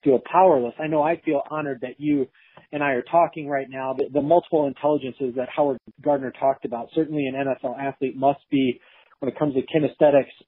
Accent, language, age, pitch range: American, English, 40-59, 135-160 Hz